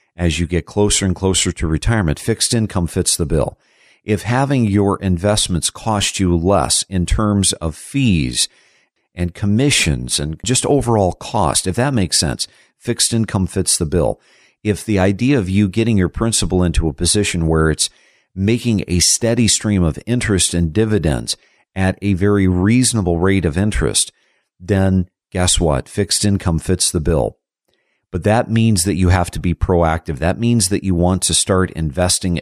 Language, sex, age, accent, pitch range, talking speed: English, male, 50-69, American, 85-105 Hz, 170 wpm